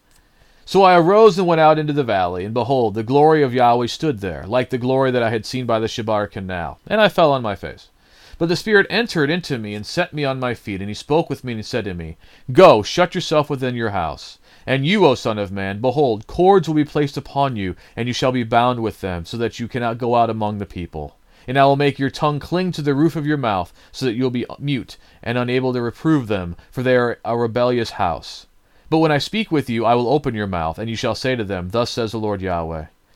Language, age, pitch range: English, 40-59, 100-140 Hz